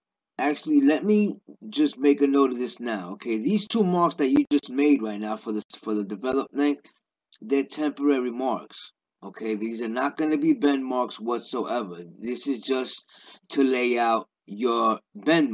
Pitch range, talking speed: 110-145 Hz, 175 wpm